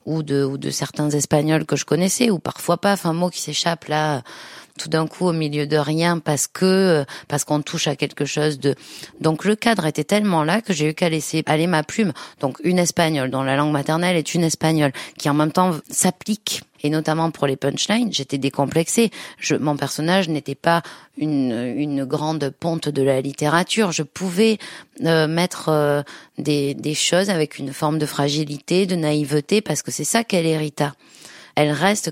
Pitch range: 145-175 Hz